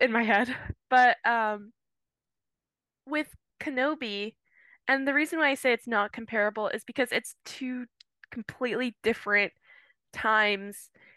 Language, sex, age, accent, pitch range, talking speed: English, female, 10-29, American, 225-290 Hz, 125 wpm